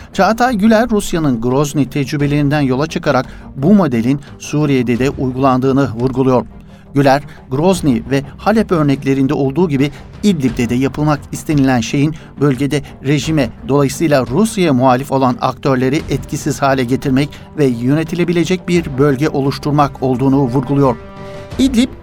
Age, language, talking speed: 60-79, Turkish, 115 wpm